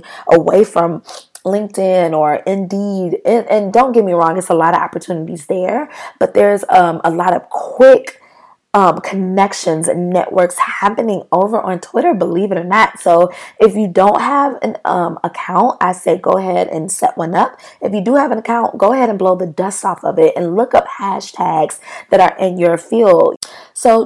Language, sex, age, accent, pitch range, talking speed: English, female, 20-39, American, 175-215 Hz, 190 wpm